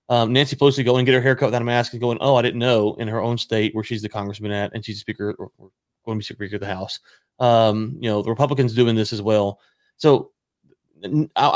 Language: English